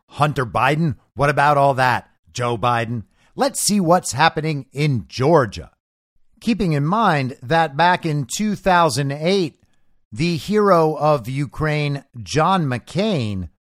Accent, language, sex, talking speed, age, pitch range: American, English, male, 120 wpm, 50-69, 120-170 Hz